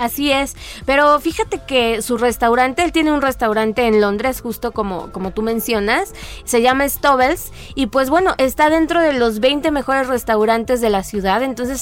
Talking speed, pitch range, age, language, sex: 180 wpm, 225-290 Hz, 20-39, Spanish, female